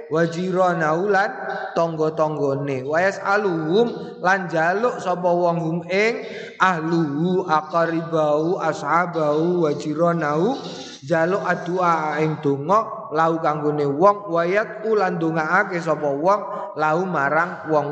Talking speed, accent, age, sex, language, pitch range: 105 wpm, native, 20-39, male, Indonesian, 140-180 Hz